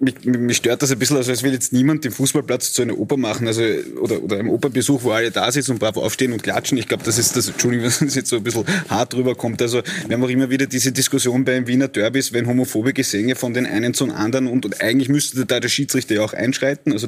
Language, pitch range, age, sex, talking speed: German, 120-140 Hz, 20-39, male, 265 wpm